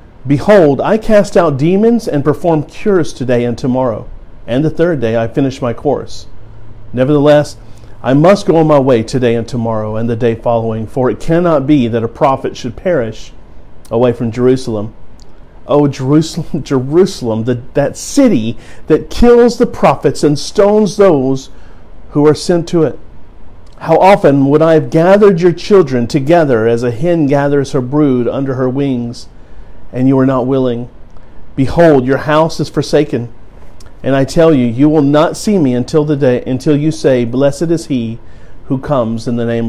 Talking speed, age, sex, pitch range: 175 wpm, 50-69, male, 115-150 Hz